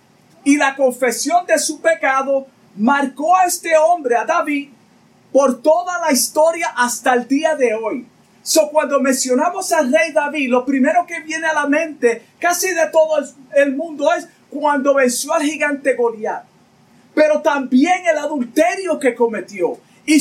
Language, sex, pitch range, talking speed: Spanish, male, 260-320 Hz, 155 wpm